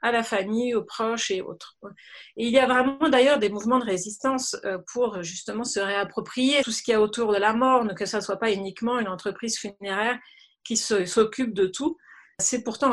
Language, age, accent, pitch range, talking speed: French, 40-59, French, 200-250 Hz, 215 wpm